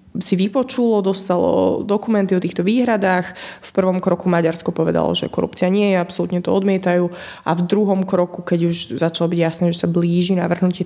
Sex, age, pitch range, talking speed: female, 20-39, 175-195 Hz, 175 wpm